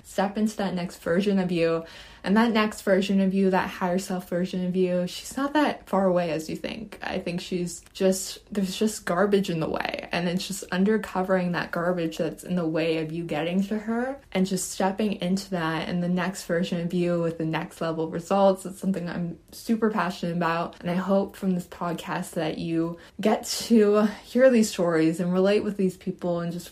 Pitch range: 175-195 Hz